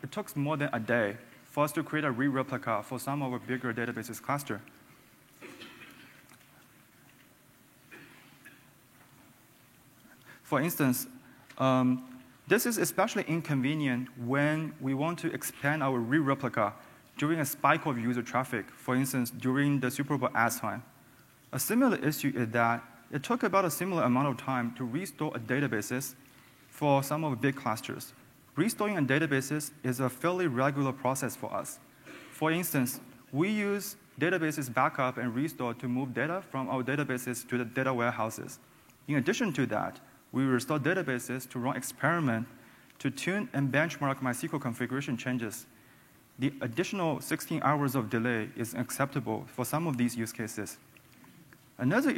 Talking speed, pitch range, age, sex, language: 150 wpm, 125-150 Hz, 20-39, male, English